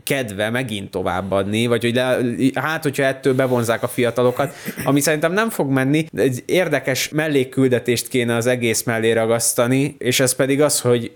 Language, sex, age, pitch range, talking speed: Hungarian, male, 20-39, 105-130 Hz, 160 wpm